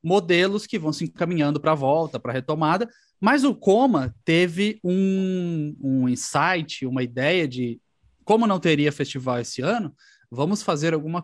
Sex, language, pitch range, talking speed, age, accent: male, Portuguese, 135-180 Hz, 160 wpm, 20-39, Brazilian